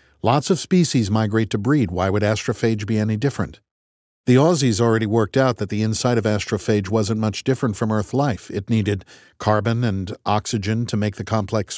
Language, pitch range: Chinese, 100-115 Hz